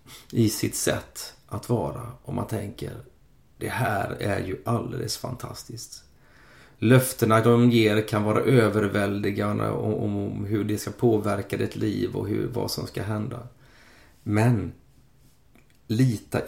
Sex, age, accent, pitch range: male, 30-49, native, 105-120 Hz